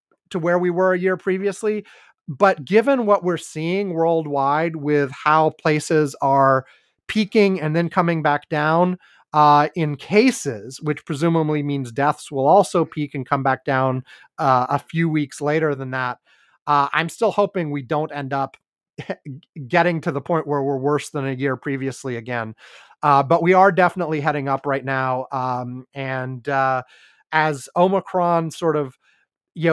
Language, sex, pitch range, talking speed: English, male, 145-180 Hz, 165 wpm